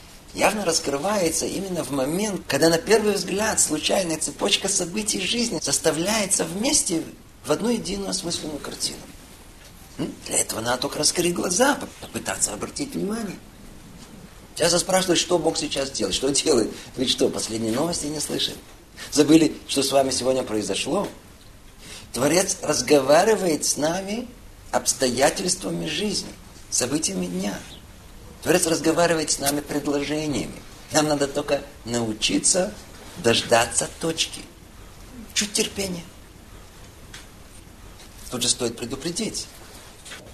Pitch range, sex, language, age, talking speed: 110-170 Hz, male, Russian, 40-59, 115 wpm